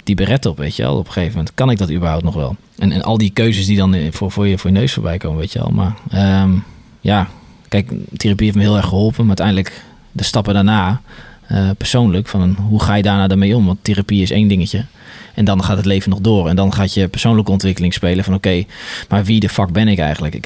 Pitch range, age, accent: 95-110 Hz, 20-39, Dutch